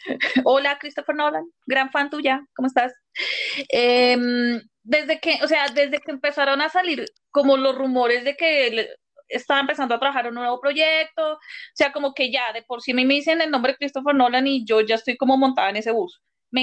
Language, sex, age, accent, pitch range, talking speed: Spanish, female, 30-49, Colombian, 235-290 Hz, 200 wpm